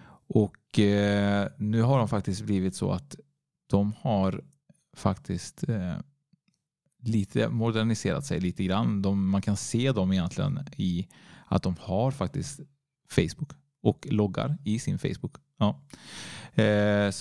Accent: Norwegian